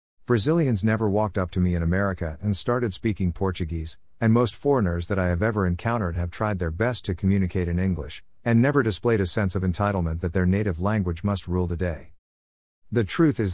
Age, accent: 50-69, American